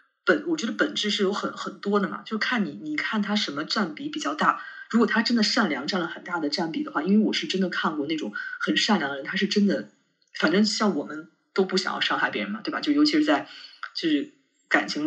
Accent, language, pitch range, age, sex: native, Chinese, 185-300 Hz, 20-39, female